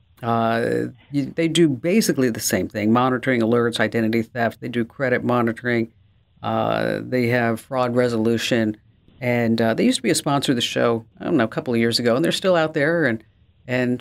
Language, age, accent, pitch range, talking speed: English, 50-69, American, 115-140 Hz, 195 wpm